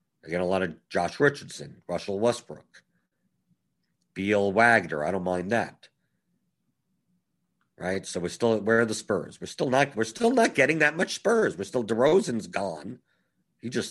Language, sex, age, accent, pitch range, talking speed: English, male, 50-69, American, 95-150 Hz, 170 wpm